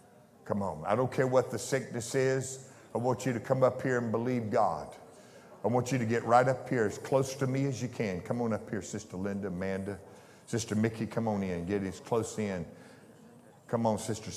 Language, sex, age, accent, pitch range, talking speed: English, male, 50-69, American, 105-130 Hz, 220 wpm